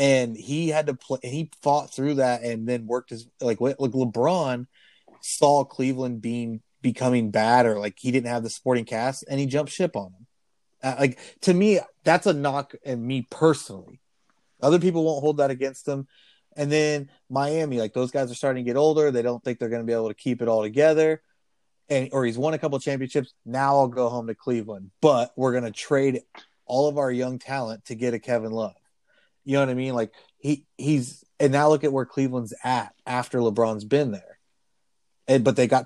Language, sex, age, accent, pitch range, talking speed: English, male, 30-49, American, 120-145 Hz, 215 wpm